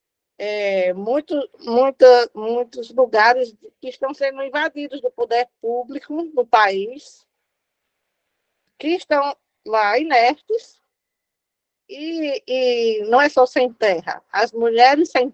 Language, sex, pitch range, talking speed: Portuguese, female, 240-300 Hz, 110 wpm